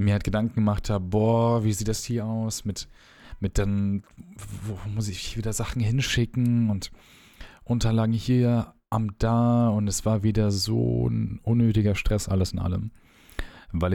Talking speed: 160 wpm